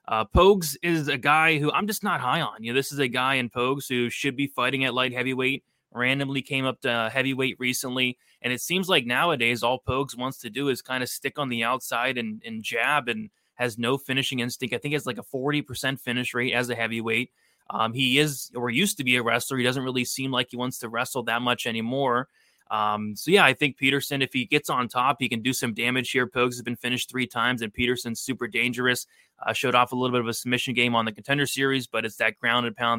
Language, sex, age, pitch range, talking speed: English, male, 20-39, 120-140 Hz, 245 wpm